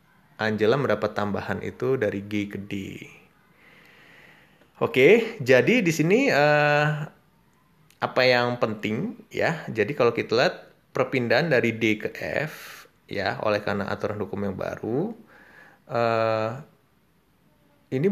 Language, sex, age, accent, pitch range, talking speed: Indonesian, male, 20-39, native, 105-155 Hz, 125 wpm